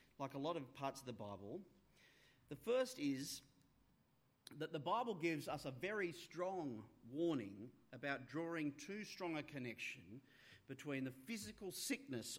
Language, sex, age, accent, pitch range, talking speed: English, male, 40-59, Australian, 130-185 Hz, 145 wpm